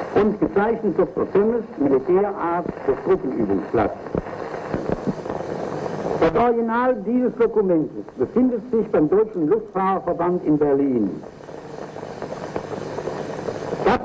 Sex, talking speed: male, 80 wpm